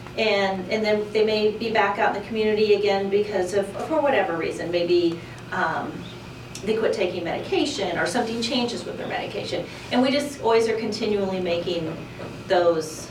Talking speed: 175 wpm